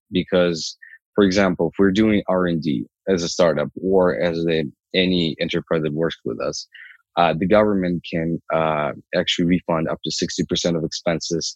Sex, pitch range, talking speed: male, 85-95 Hz, 160 wpm